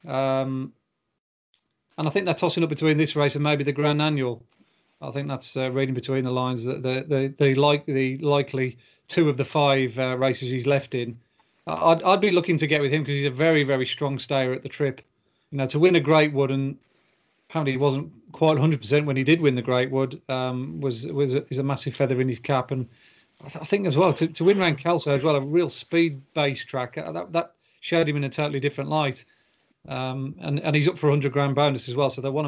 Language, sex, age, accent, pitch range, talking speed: English, male, 40-59, British, 135-155 Hz, 240 wpm